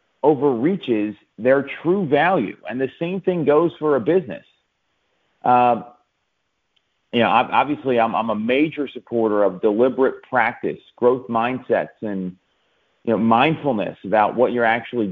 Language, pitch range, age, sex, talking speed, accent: English, 115-150 Hz, 40-59, male, 140 wpm, American